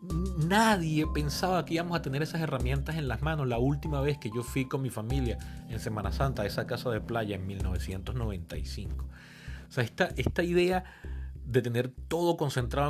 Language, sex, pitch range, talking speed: Spanish, male, 110-155 Hz, 180 wpm